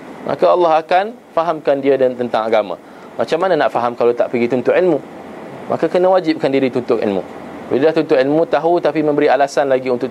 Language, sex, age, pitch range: Malay, male, 20-39, 110-155 Hz